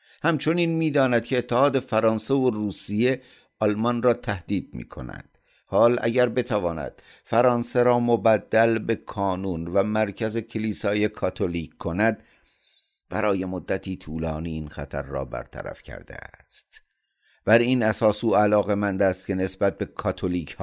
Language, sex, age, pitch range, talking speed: Persian, male, 50-69, 80-110 Hz, 130 wpm